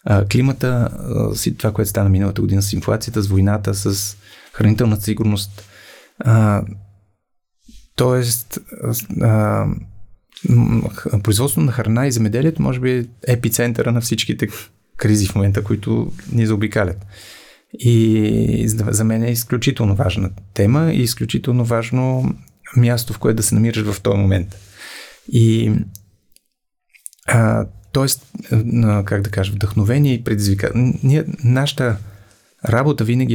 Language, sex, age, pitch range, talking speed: Bulgarian, male, 30-49, 100-120 Hz, 110 wpm